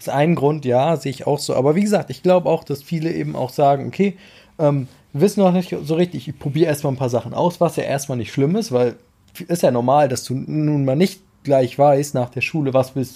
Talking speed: 250 wpm